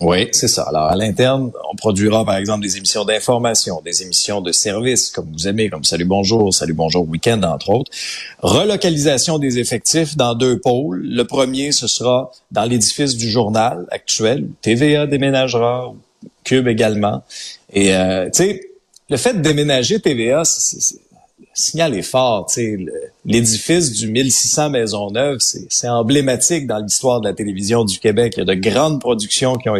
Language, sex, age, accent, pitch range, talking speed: French, male, 30-49, Canadian, 100-130 Hz, 175 wpm